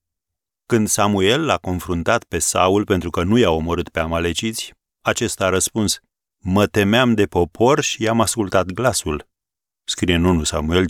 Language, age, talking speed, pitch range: Romanian, 40-59, 155 wpm, 85-115 Hz